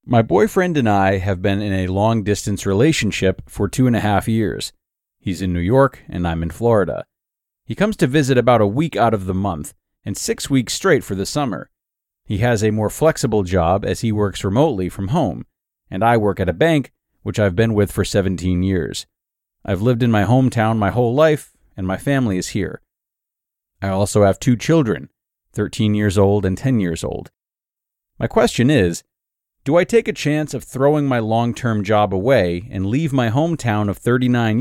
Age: 30-49